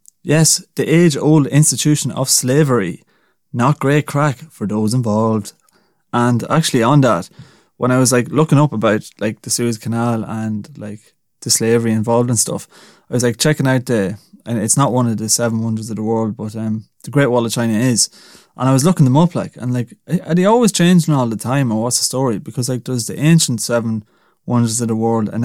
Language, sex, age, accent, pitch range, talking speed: English, male, 20-39, Irish, 115-150 Hz, 210 wpm